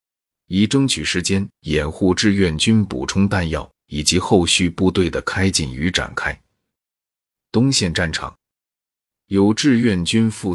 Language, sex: Chinese, male